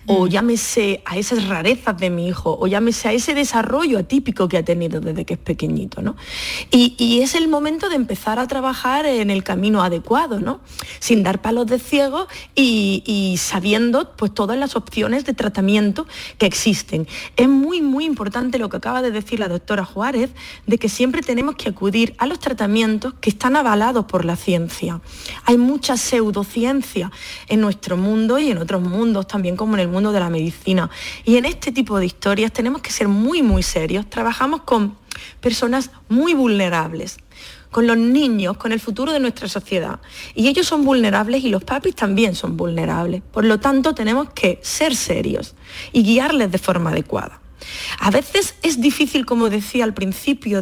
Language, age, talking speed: Spanish, 30-49, 180 wpm